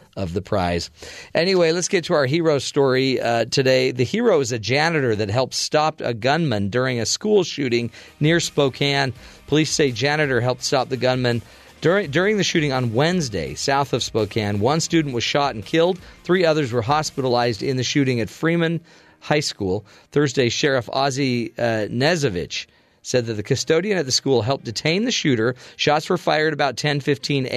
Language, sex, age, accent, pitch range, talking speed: English, male, 40-59, American, 115-145 Hz, 180 wpm